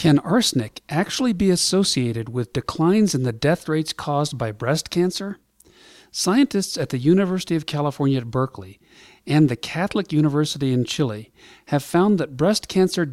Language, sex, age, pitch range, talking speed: English, male, 50-69, 140-195 Hz, 155 wpm